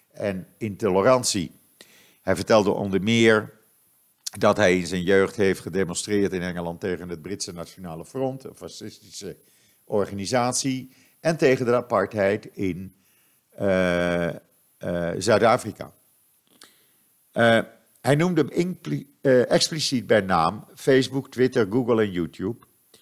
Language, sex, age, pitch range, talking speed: Dutch, male, 50-69, 95-130 Hz, 110 wpm